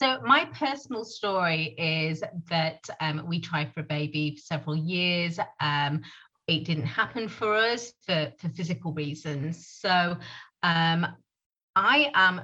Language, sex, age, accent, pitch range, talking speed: English, female, 30-49, British, 165-225 Hz, 140 wpm